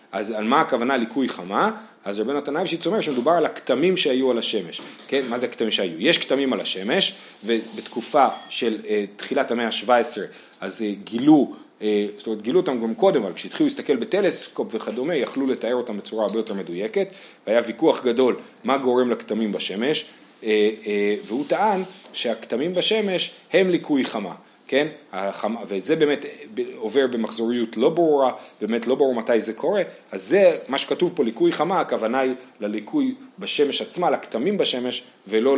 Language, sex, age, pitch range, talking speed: Hebrew, male, 40-59, 105-150 Hz, 160 wpm